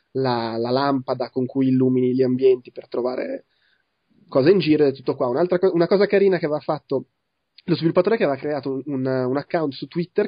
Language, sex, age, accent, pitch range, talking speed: Italian, male, 20-39, native, 130-155 Hz, 200 wpm